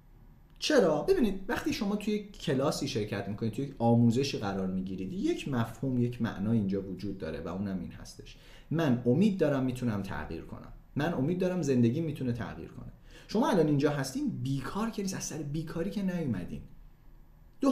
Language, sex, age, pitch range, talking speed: Persian, male, 30-49, 120-190 Hz, 165 wpm